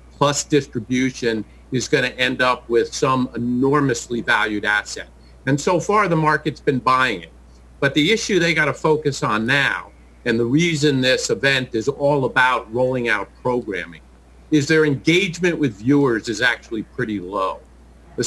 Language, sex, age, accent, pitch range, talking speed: English, male, 50-69, American, 110-150 Hz, 165 wpm